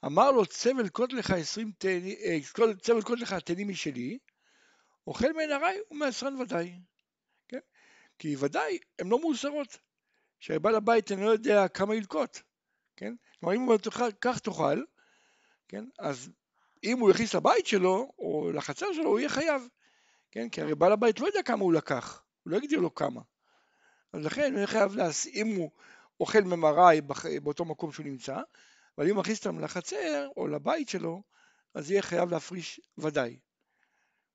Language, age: Hebrew, 60-79